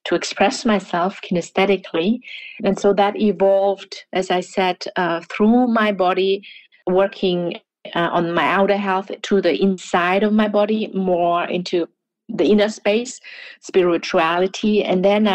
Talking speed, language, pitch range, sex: 135 wpm, English, 180-210 Hz, female